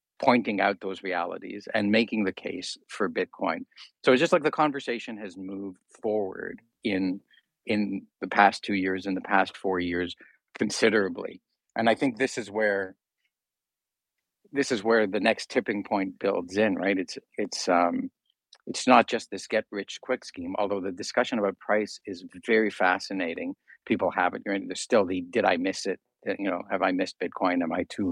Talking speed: 180 wpm